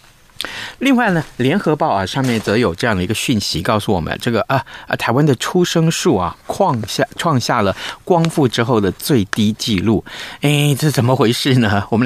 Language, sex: Chinese, male